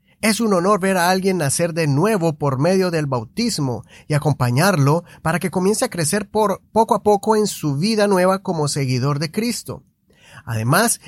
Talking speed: 175 wpm